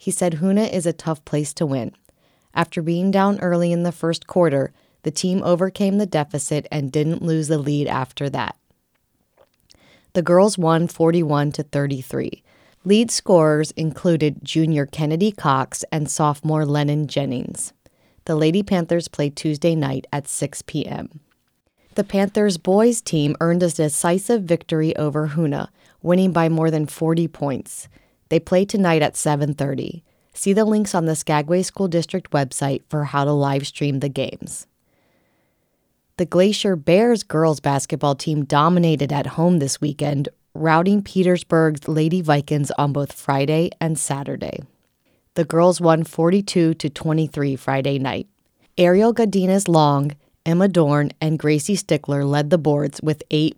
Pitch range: 145-180 Hz